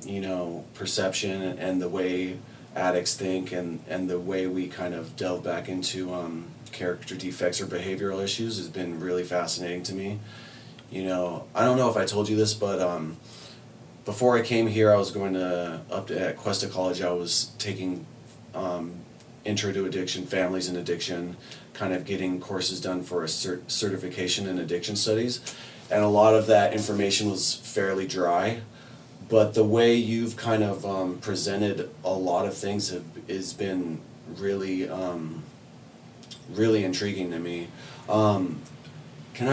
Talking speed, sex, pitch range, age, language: 160 wpm, male, 90-110 Hz, 30-49, English